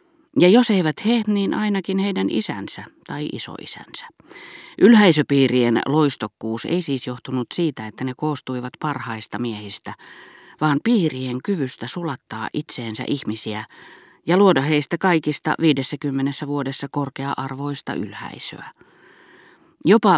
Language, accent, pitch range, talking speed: Finnish, native, 120-155 Hz, 105 wpm